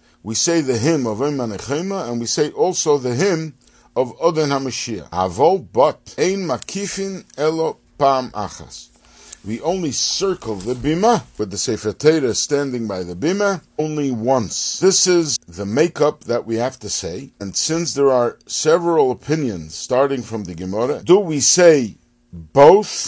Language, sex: English, male